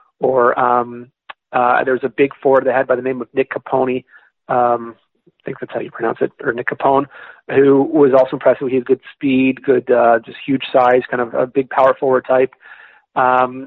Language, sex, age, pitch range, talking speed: English, male, 30-49, 125-140 Hz, 205 wpm